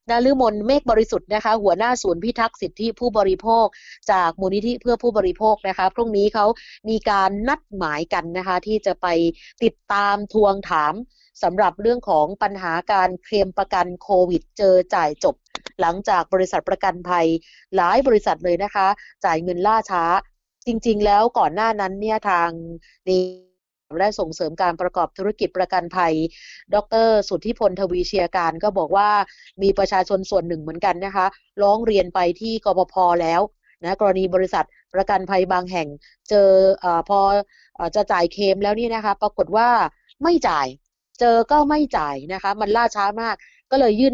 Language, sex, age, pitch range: Thai, female, 20-39, 180-215 Hz